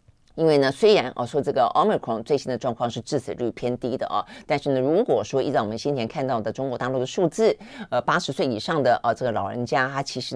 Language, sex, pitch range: Chinese, female, 120-150 Hz